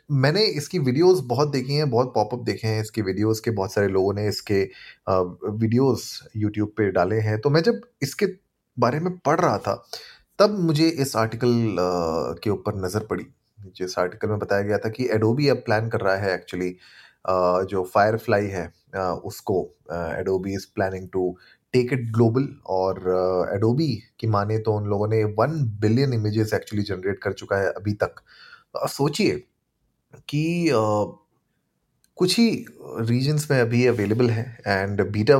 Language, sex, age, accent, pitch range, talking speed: Hindi, male, 30-49, native, 100-140 Hz, 160 wpm